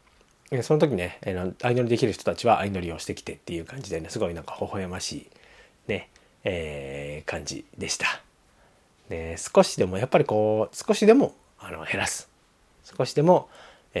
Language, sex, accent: Japanese, male, native